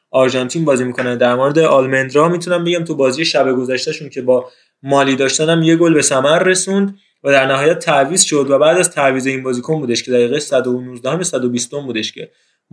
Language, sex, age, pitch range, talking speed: Persian, male, 20-39, 130-160 Hz, 190 wpm